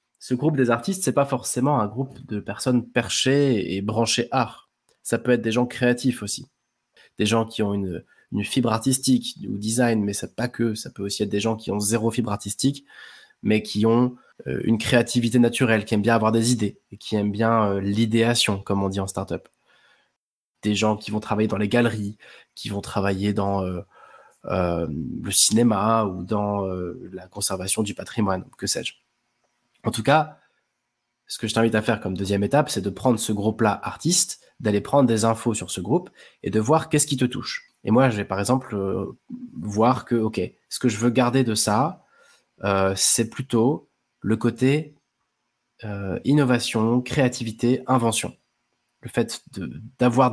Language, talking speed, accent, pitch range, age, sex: French, 185 wpm, French, 105-125 Hz, 20-39, male